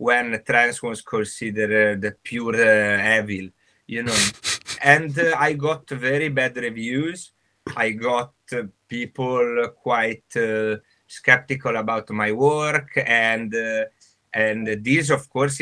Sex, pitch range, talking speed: male, 110-135 Hz, 130 wpm